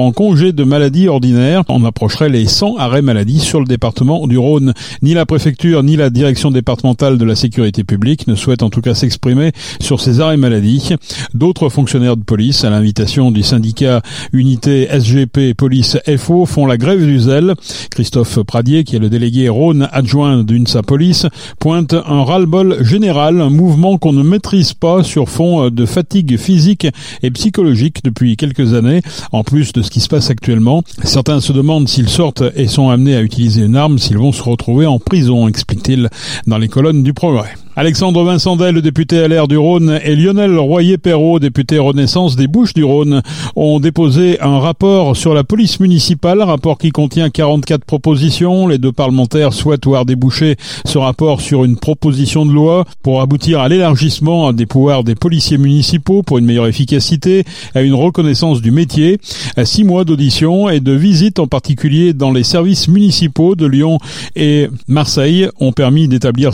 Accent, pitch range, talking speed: French, 125-160 Hz, 175 wpm